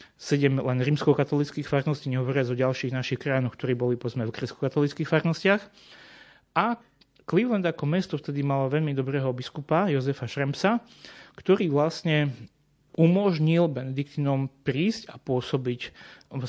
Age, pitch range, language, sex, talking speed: 30-49, 125-150 Hz, Slovak, male, 120 wpm